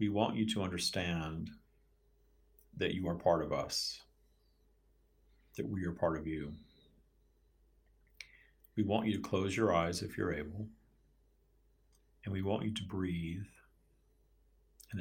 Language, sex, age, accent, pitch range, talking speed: English, male, 50-69, American, 80-100 Hz, 135 wpm